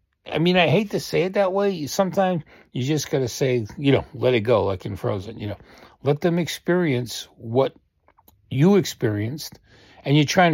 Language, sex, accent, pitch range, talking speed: English, male, American, 115-170 Hz, 195 wpm